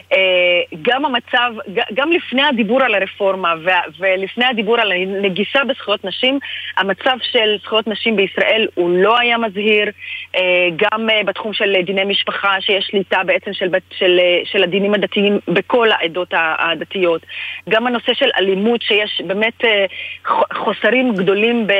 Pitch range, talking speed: 190-235 Hz, 125 wpm